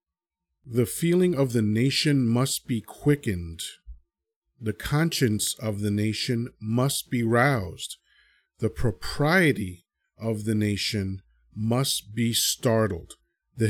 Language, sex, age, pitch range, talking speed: English, male, 40-59, 105-140 Hz, 110 wpm